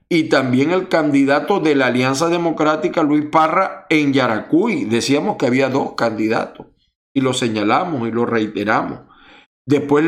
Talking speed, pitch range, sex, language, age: 145 wpm, 115-160 Hz, male, Spanish, 50-69